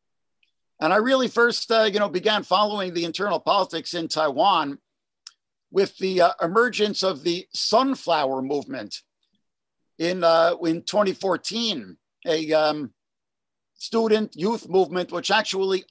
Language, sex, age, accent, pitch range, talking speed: English, male, 50-69, American, 160-215 Hz, 125 wpm